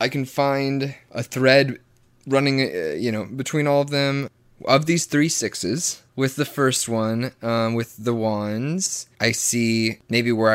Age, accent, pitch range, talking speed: 20-39, American, 105-125 Hz, 165 wpm